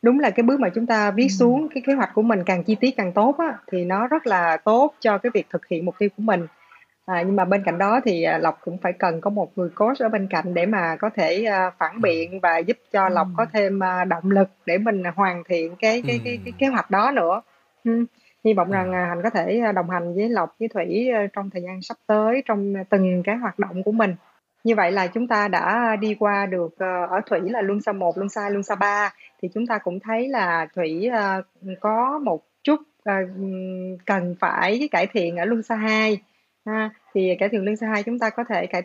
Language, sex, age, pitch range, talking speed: Vietnamese, female, 20-39, 180-225 Hz, 235 wpm